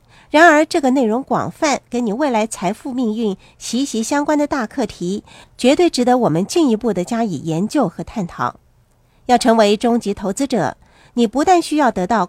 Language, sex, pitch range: Chinese, female, 190-260 Hz